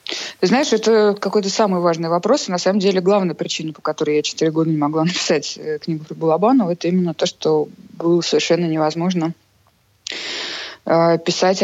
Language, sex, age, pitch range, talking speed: Russian, female, 20-39, 155-190 Hz, 160 wpm